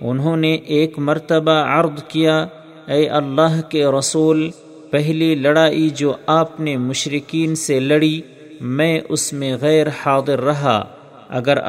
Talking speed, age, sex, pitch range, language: 130 wpm, 50-69, male, 140-160 Hz, Urdu